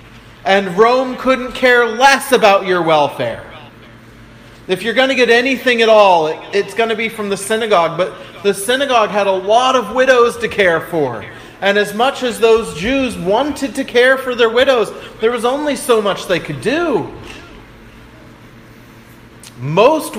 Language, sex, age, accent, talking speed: English, male, 30-49, American, 165 wpm